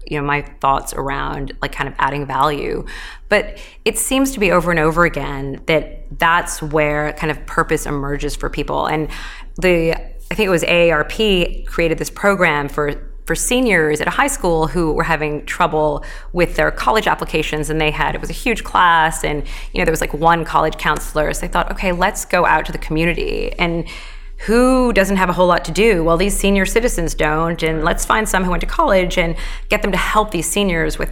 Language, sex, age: English, female, 20-39